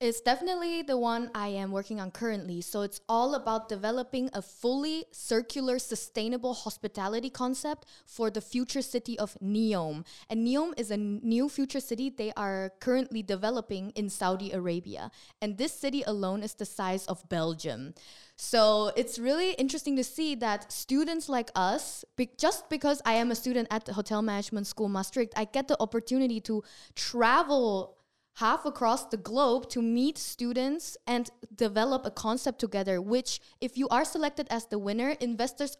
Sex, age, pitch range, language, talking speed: female, 10-29, 205-255 Hz, Dutch, 165 wpm